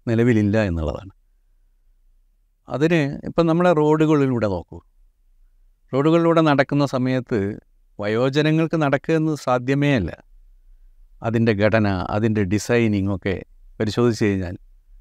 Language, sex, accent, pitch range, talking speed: Malayalam, male, native, 100-145 Hz, 90 wpm